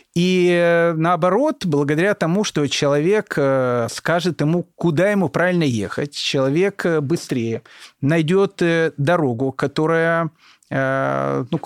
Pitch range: 130-175 Hz